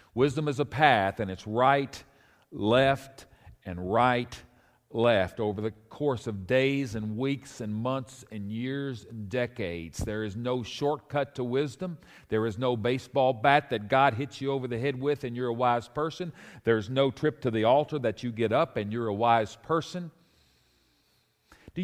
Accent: American